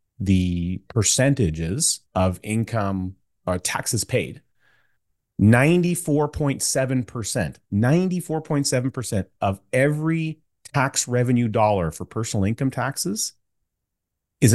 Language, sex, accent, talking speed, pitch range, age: English, male, American, 105 wpm, 105-145 Hz, 30-49